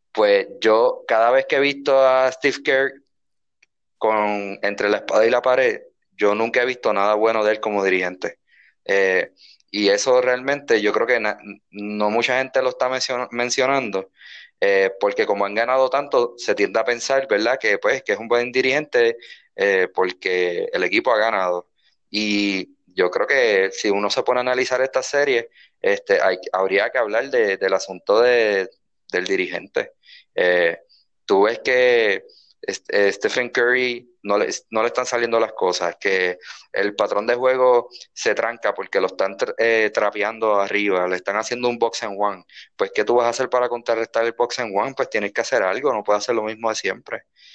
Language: Spanish